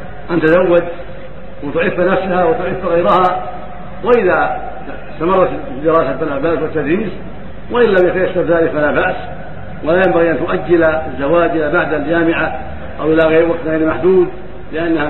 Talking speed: 125 wpm